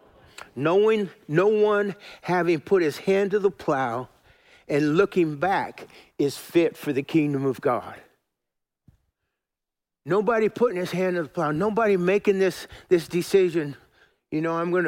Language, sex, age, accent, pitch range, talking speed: English, male, 50-69, American, 150-190 Hz, 145 wpm